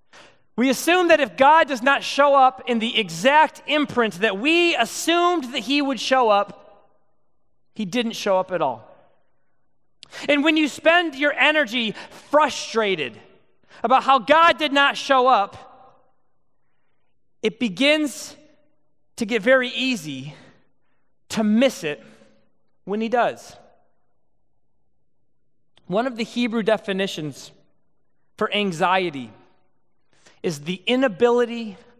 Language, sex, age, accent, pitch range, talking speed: English, male, 30-49, American, 215-280 Hz, 120 wpm